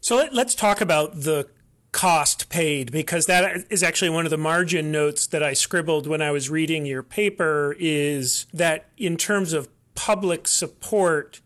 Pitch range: 145-180 Hz